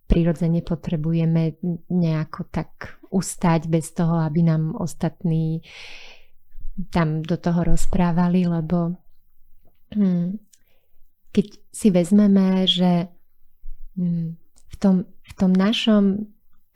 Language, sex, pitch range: Slovak, female, 160-180 Hz